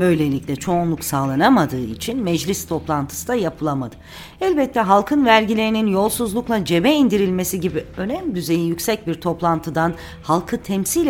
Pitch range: 160-215 Hz